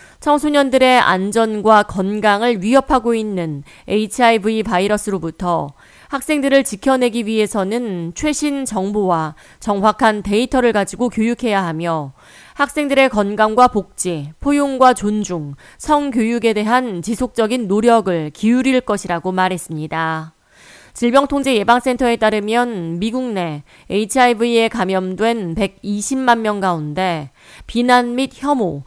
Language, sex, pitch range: Korean, female, 185-250 Hz